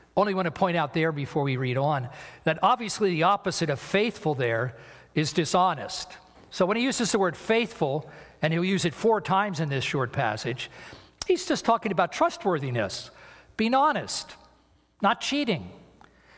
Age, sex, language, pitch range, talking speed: 50-69, male, English, 140-200 Hz, 165 wpm